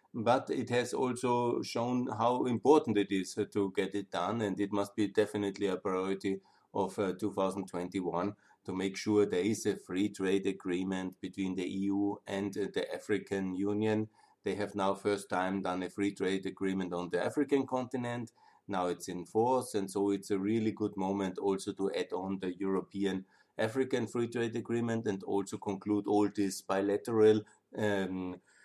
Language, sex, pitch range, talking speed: German, male, 95-110 Hz, 170 wpm